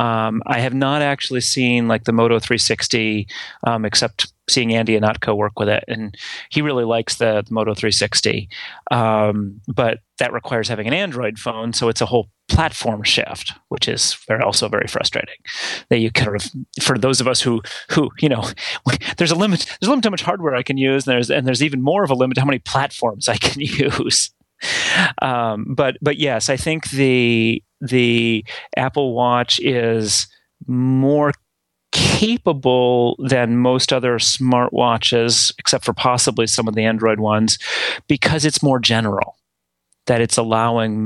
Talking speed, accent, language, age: 170 wpm, American, English, 30-49